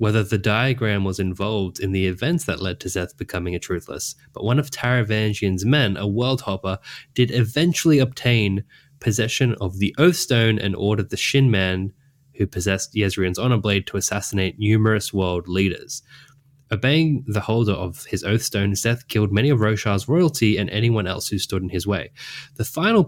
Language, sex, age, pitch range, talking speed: English, male, 20-39, 95-130 Hz, 180 wpm